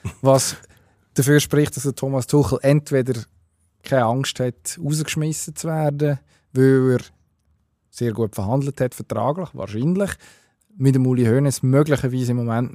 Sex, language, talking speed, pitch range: male, German, 135 wpm, 115-140 Hz